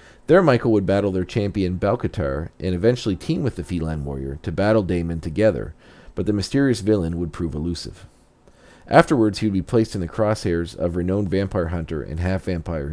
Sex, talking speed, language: male, 180 wpm, English